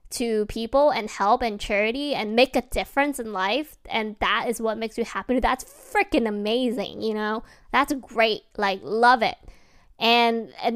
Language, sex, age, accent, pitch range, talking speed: English, female, 20-39, American, 220-260 Hz, 175 wpm